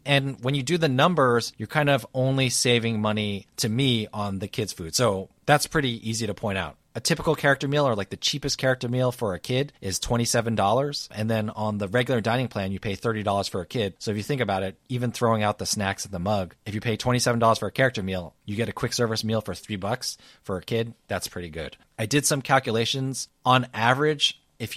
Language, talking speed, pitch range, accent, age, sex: English, 235 wpm, 100-130 Hz, American, 30-49, male